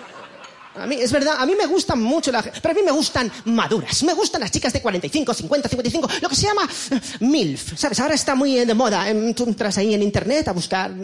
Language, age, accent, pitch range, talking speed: Spanish, 30-49, Spanish, 215-310 Hz, 230 wpm